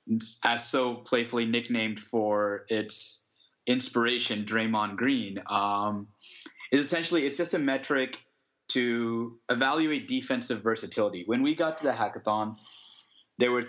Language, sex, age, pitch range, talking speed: English, male, 20-39, 110-125 Hz, 125 wpm